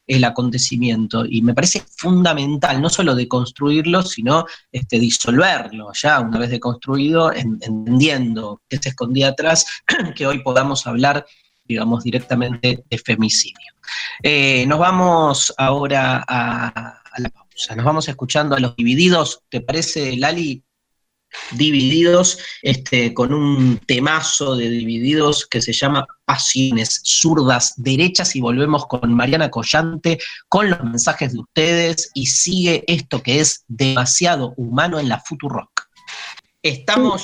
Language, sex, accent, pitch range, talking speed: Spanish, male, Argentinian, 125-160 Hz, 130 wpm